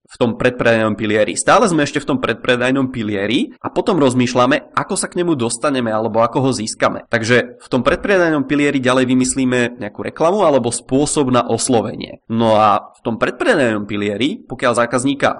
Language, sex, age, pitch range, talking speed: Czech, male, 20-39, 115-135 Hz, 170 wpm